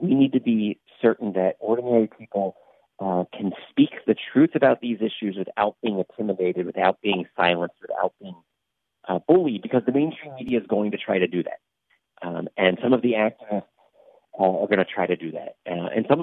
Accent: American